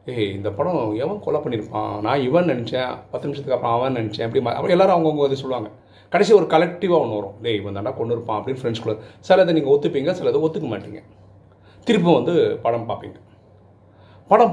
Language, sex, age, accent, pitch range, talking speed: Tamil, male, 40-59, native, 105-155 Hz, 185 wpm